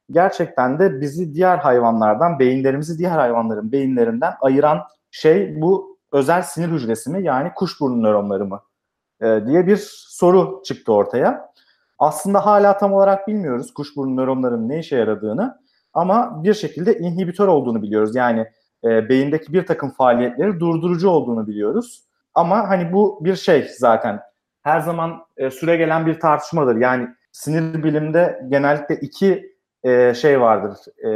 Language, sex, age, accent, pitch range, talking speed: Turkish, male, 40-59, native, 130-190 Hz, 135 wpm